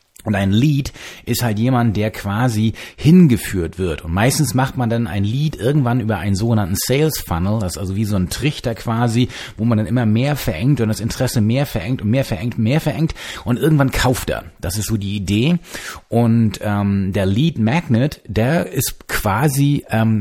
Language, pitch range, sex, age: German, 100-130 Hz, male, 30-49